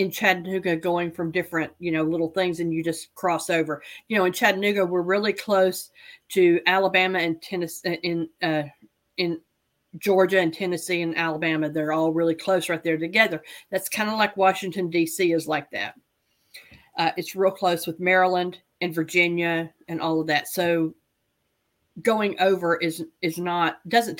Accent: American